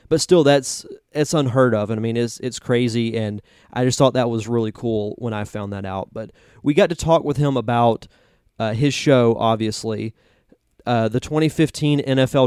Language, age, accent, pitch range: English, 30-49, American, 115-135 Hz